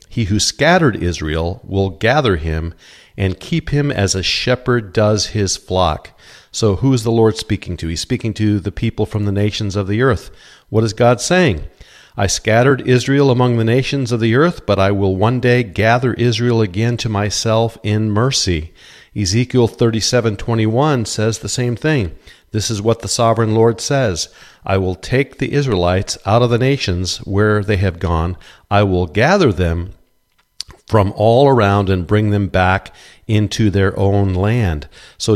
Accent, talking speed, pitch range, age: American, 175 wpm, 100-125 Hz, 50-69